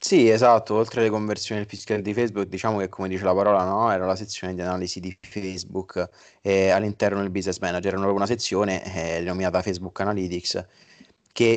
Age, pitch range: 20-39, 95-110 Hz